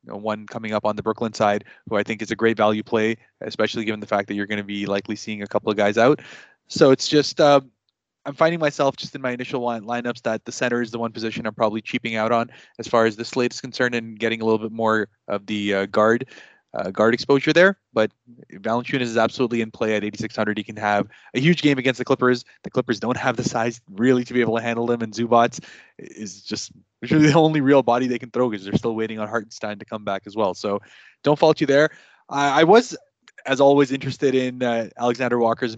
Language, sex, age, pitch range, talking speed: English, male, 20-39, 110-135 Hz, 240 wpm